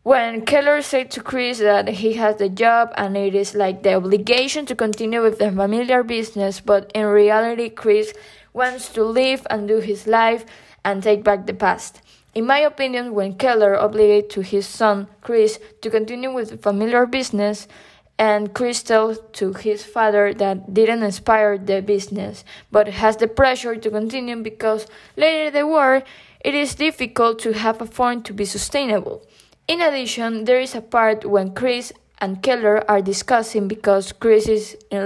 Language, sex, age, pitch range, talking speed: English, female, 20-39, 205-235 Hz, 175 wpm